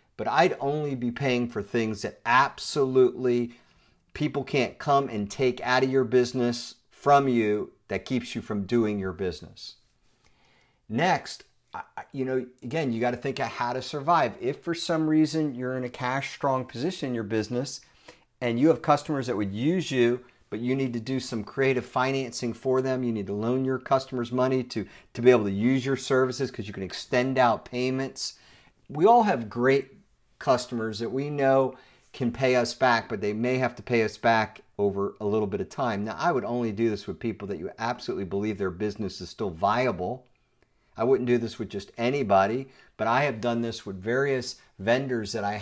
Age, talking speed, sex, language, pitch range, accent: 50-69, 195 wpm, male, English, 110-130 Hz, American